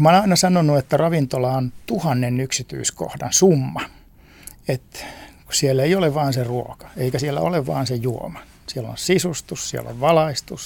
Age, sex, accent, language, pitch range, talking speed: 60-79, male, native, Finnish, 125-155 Hz, 165 wpm